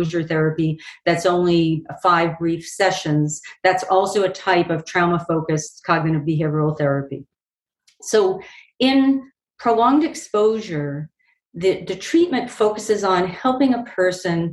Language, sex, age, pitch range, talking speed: English, female, 50-69, 170-215 Hz, 110 wpm